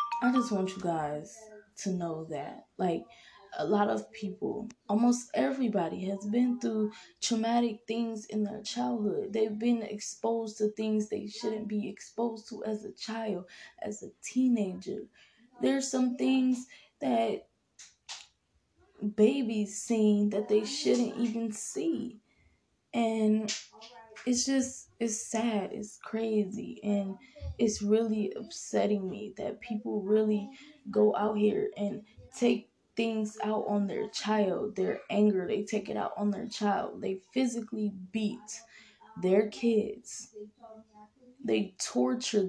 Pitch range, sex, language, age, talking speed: 210-230 Hz, female, English, 20-39, 130 wpm